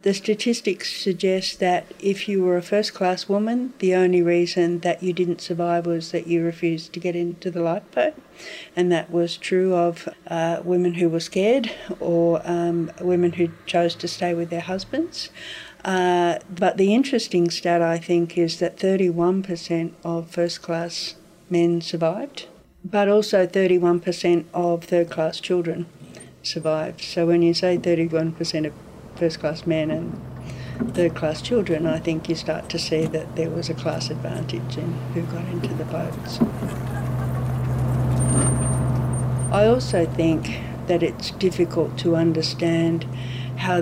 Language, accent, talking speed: English, Australian, 145 wpm